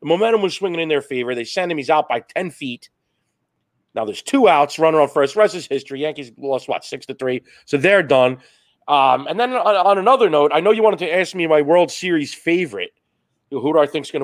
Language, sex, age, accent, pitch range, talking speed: English, male, 30-49, American, 125-165 Hz, 245 wpm